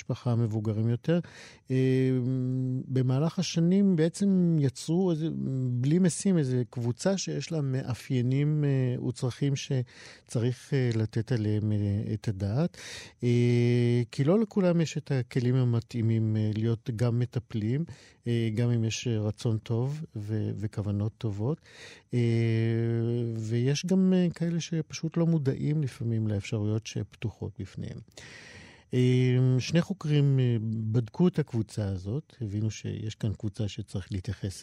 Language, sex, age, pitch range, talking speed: Hebrew, male, 50-69, 105-135 Hz, 120 wpm